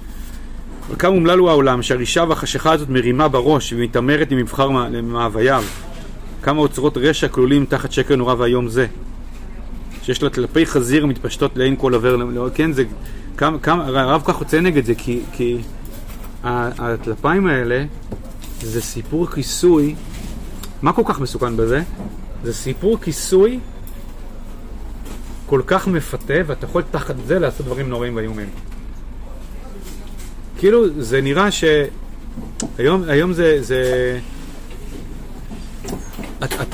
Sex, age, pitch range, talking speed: male, 30-49, 120-155 Hz, 120 wpm